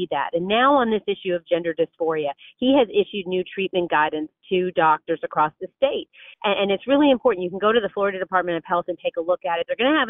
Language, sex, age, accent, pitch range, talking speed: English, female, 40-59, American, 185-255 Hz, 260 wpm